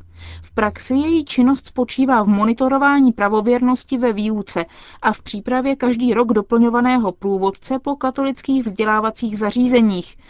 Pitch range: 200-255 Hz